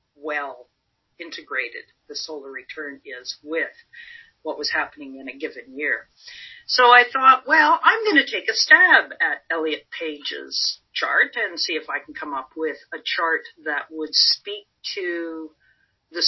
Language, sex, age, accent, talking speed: English, female, 50-69, American, 160 wpm